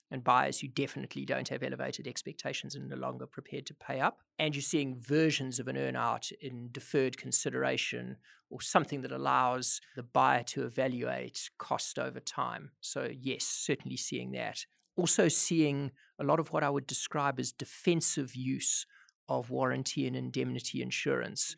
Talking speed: 160 wpm